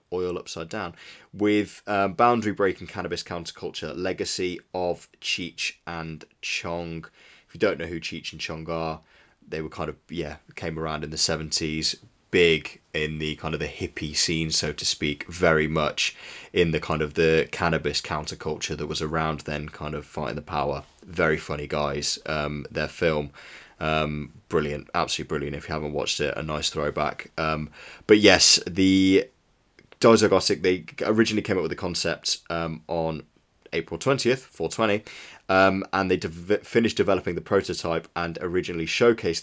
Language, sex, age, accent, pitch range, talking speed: English, male, 20-39, British, 75-95 Hz, 165 wpm